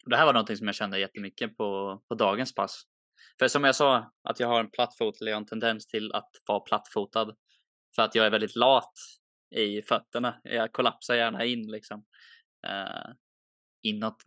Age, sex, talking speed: 20-39, male, 185 wpm